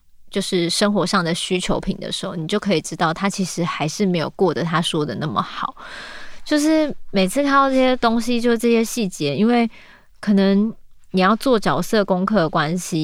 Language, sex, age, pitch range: Chinese, female, 20-39, 175-215 Hz